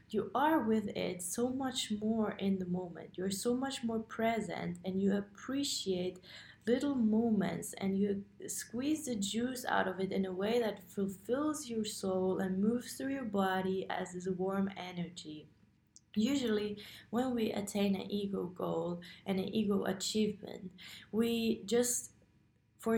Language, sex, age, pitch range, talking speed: English, female, 20-39, 175-220 Hz, 150 wpm